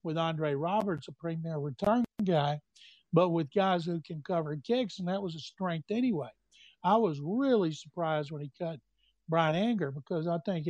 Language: English